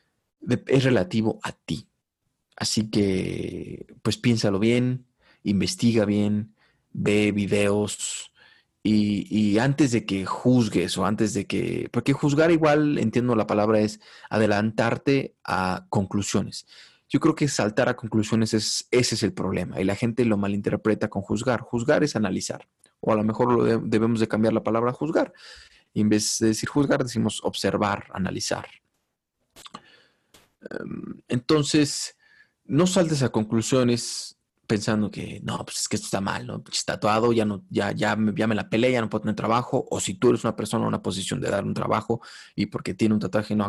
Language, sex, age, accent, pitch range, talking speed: English, male, 30-49, Mexican, 105-125 Hz, 175 wpm